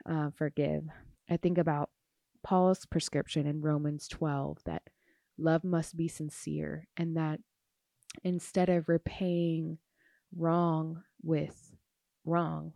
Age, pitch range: 20-39, 150-170 Hz